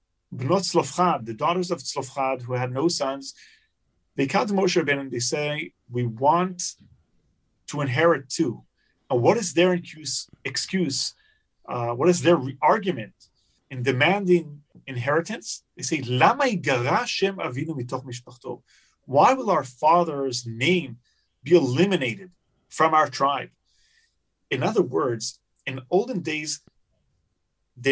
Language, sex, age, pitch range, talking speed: English, male, 30-49, 130-180 Hz, 125 wpm